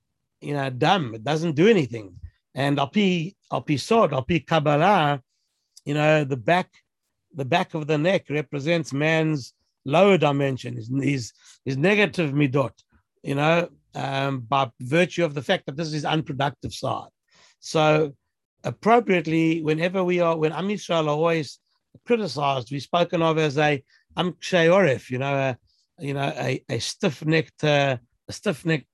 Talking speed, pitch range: 145 wpm, 140-170 Hz